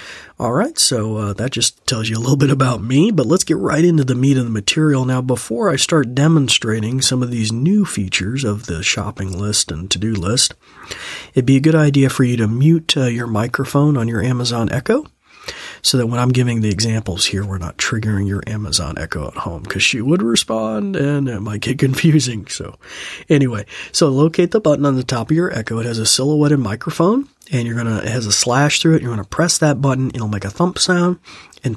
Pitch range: 110-150 Hz